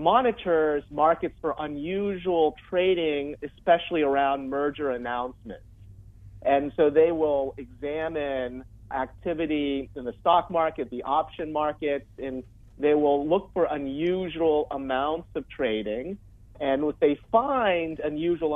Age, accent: 40-59, American